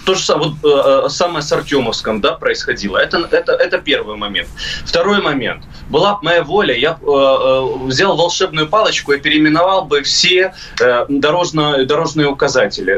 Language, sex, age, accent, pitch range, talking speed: Russian, male, 20-39, native, 145-200 Hz, 155 wpm